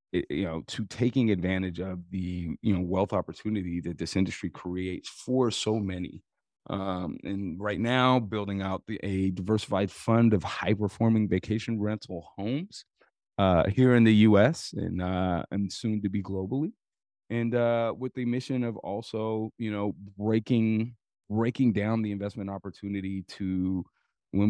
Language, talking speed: English, 150 wpm